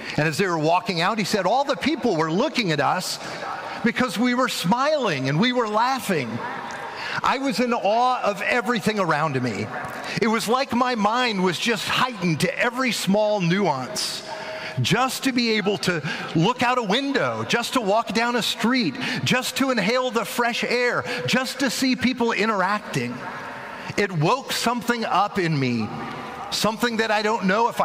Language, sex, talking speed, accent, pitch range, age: English, male, 175 wpm, American, 170-245 Hz, 40-59